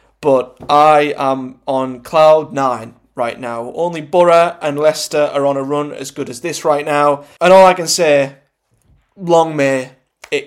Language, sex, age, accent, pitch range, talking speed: English, male, 20-39, British, 140-175 Hz, 170 wpm